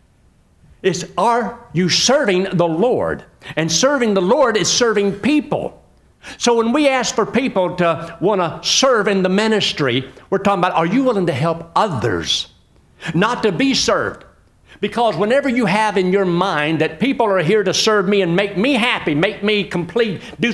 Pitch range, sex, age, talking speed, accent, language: 165-245 Hz, male, 60-79, 180 wpm, American, English